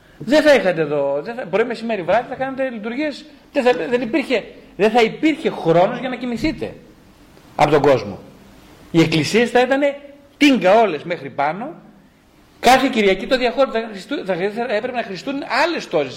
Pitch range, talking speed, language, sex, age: 155-235 Hz, 155 wpm, Greek, male, 40-59